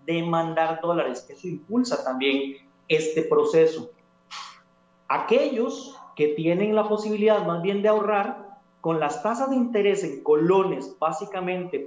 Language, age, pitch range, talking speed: Spanish, 40-59, 145-205 Hz, 125 wpm